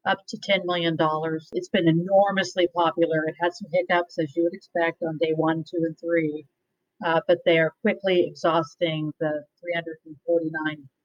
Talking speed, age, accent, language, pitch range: 170 wpm, 50-69, American, English, 170-205 Hz